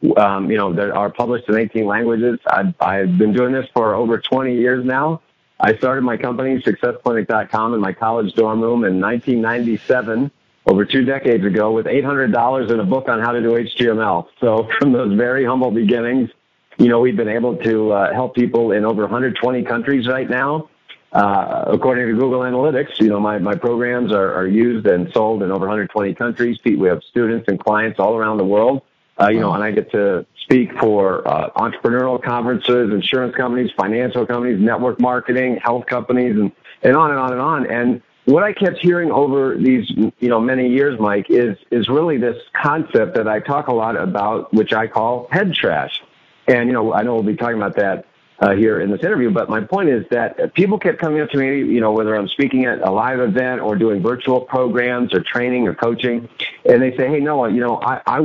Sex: male